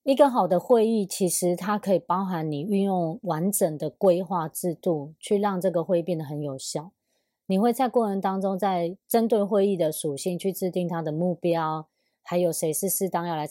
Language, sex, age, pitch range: Chinese, female, 20-39, 165-205 Hz